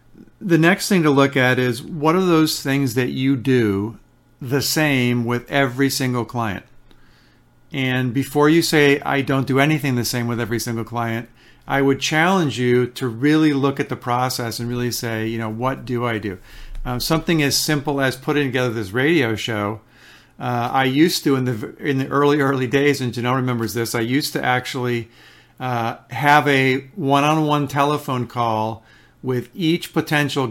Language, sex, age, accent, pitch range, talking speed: English, male, 50-69, American, 125-140 Hz, 180 wpm